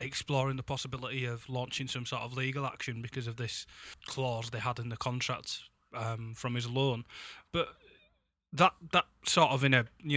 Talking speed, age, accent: 185 wpm, 20-39, British